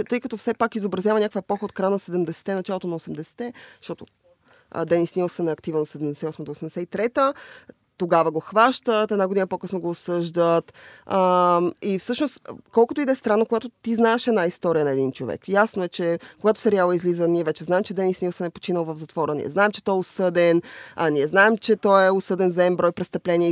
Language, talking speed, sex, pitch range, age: Bulgarian, 195 wpm, female, 175-230 Hz, 20-39